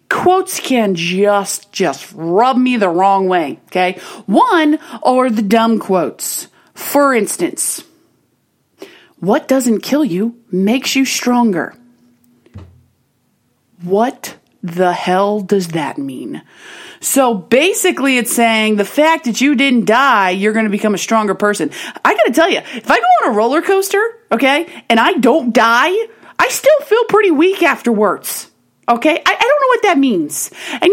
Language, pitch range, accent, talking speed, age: English, 200-335 Hz, American, 150 wpm, 30-49